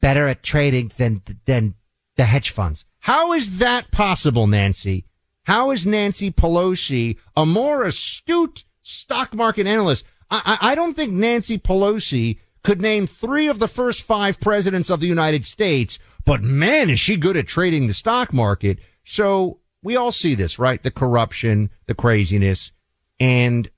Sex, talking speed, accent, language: male, 160 wpm, American, English